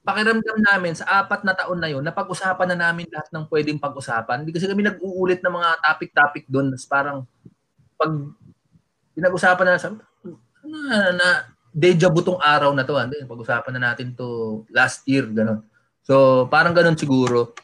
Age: 20-39